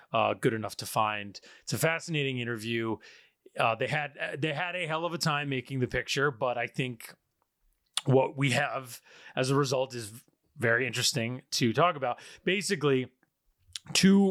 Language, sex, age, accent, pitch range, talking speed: English, male, 30-49, American, 120-145 Hz, 165 wpm